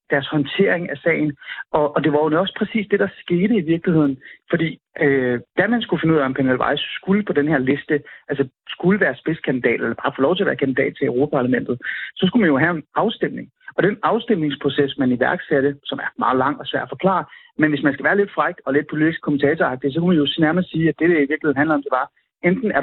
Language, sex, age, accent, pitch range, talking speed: Danish, male, 30-49, native, 140-180 Hz, 245 wpm